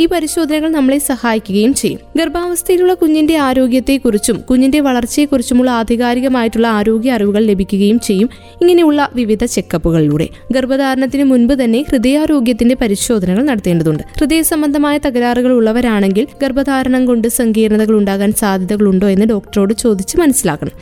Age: 20-39